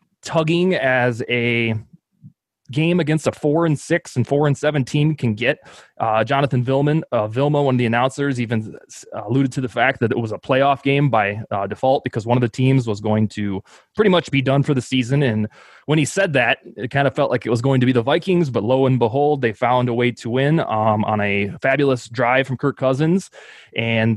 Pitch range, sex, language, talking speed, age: 115-145 Hz, male, English, 225 wpm, 20-39